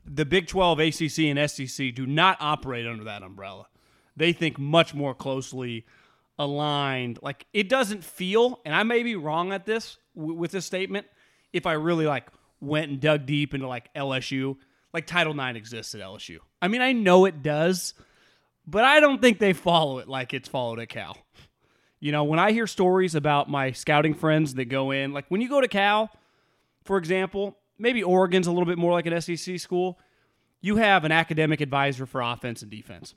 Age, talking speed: 30-49, 195 wpm